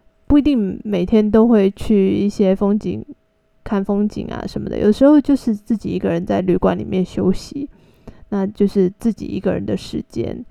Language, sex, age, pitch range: Chinese, female, 20-39, 190-225 Hz